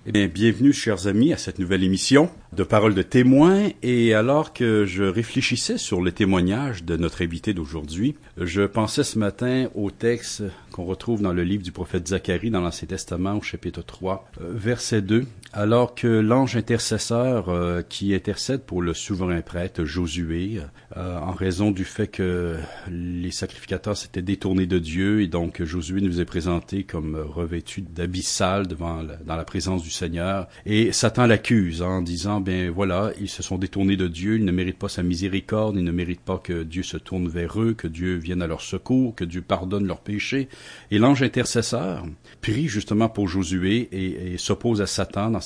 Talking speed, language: 185 wpm, English